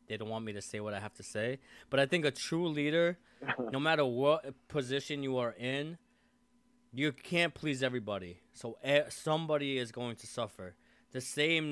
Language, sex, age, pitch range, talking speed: English, male, 20-39, 110-140 Hz, 185 wpm